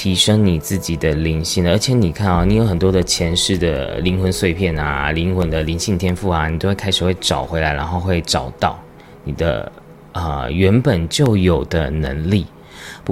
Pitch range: 85-105 Hz